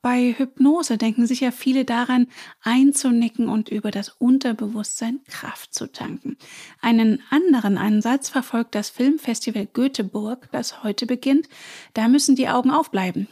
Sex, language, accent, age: female, German, German, 30-49